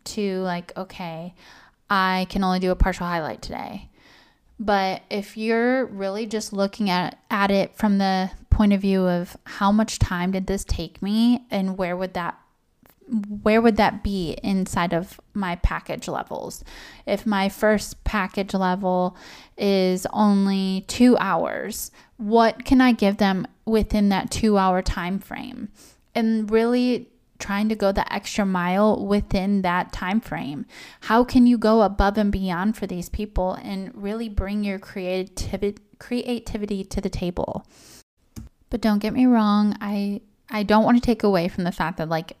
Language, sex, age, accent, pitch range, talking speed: English, female, 10-29, American, 185-215 Hz, 160 wpm